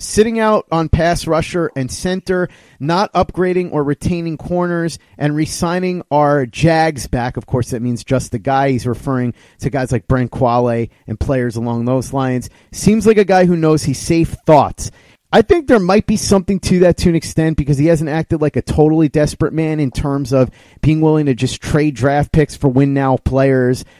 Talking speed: 200 wpm